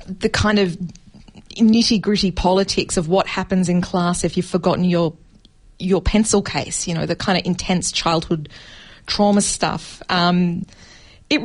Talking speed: 150 wpm